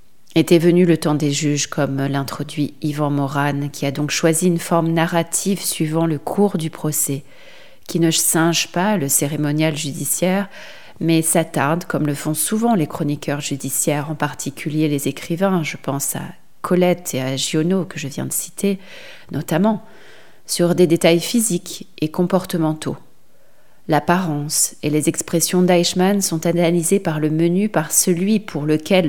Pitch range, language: 145-175 Hz, French